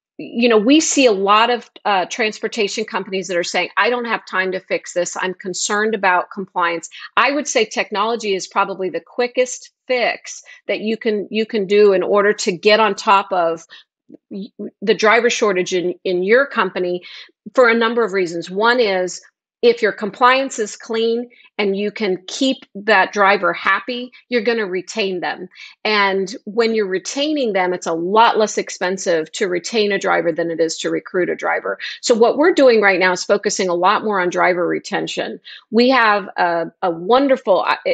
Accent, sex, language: American, female, English